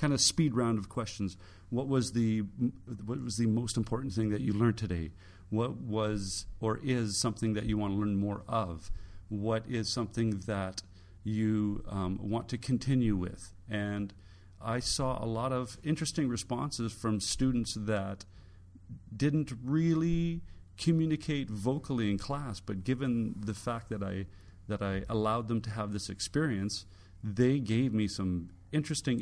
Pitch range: 100-120 Hz